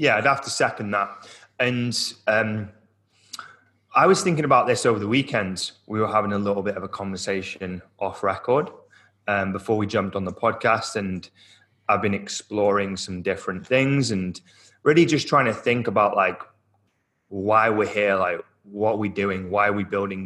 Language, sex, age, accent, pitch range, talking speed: English, male, 20-39, British, 100-115 Hz, 180 wpm